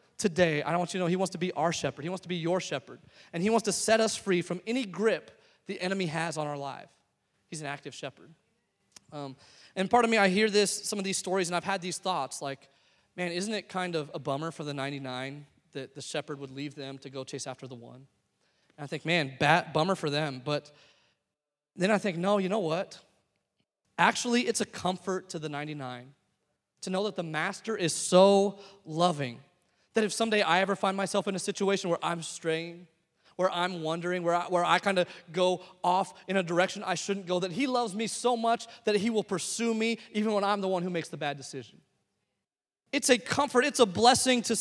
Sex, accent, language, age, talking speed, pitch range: male, American, English, 30-49, 220 wpm, 155-210 Hz